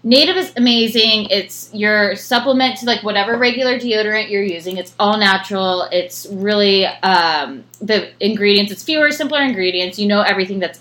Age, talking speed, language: 20-39, 160 wpm, English